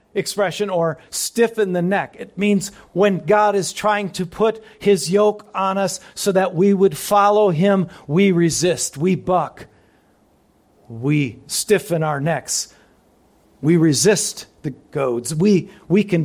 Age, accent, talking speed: 50-69, American, 140 wpm